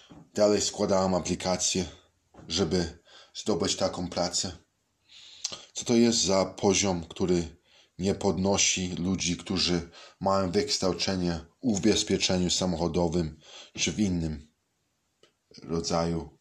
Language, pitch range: Hebrew, 85-105 Hz